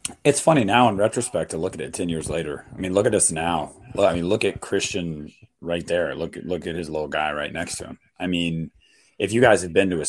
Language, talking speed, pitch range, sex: English, 260 wpm, 85-120 Hz, male